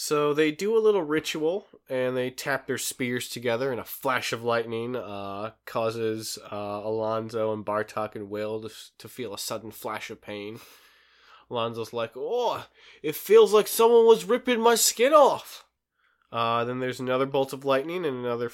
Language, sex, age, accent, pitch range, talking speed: English, male, 20-39, American, 110-145 Hz, 175 wpm